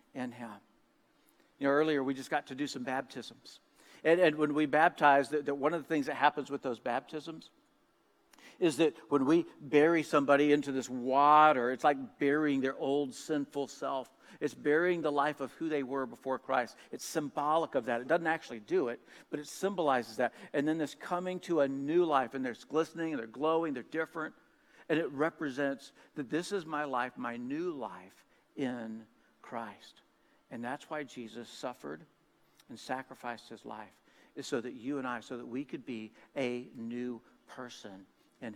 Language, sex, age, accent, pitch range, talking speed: English, male, 60-79, American, 130-160 Hz, 185 wpm